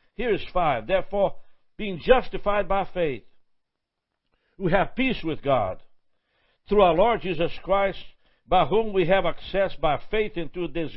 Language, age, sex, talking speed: English, 60-79, male, 150 wpm